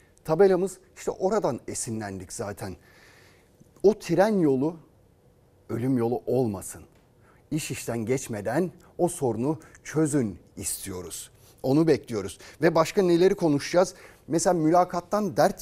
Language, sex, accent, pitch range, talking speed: Turkish, male, native, 115-170 Hz, 105 wpm